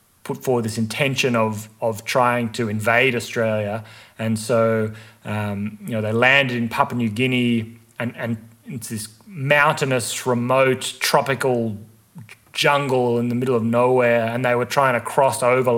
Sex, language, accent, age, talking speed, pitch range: male, English, Australian, 30-49, 155 wpm, 115-130 Hz